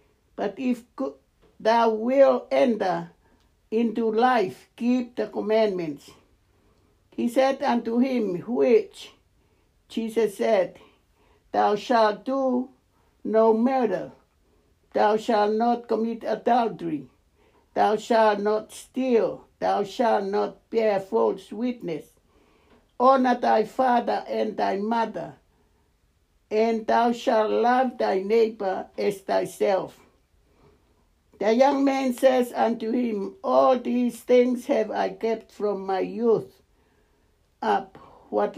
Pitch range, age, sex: 195-245 Hz, 60-79, male